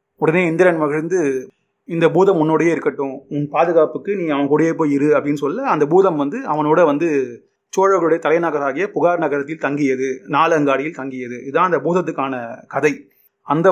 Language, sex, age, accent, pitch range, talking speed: Tamil, male, 30-49, native, 145-195 Hz, 145 wpm